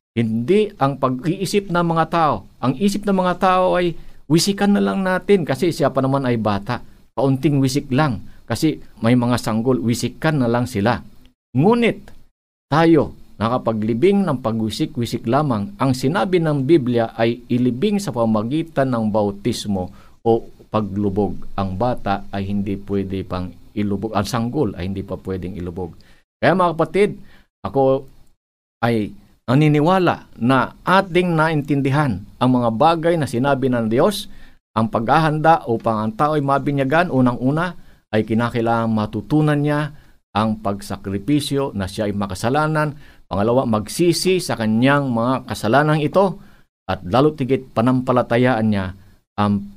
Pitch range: 105-155 Hz